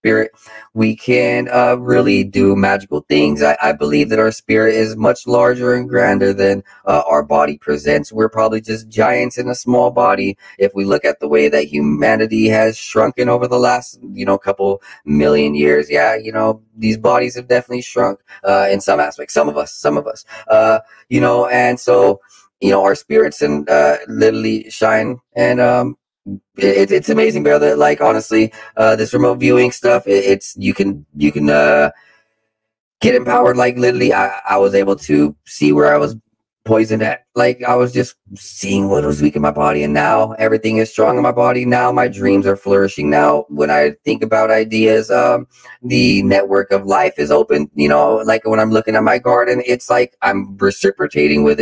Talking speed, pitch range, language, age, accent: 195 wpm, 75-110 Hz, English, 20-39, American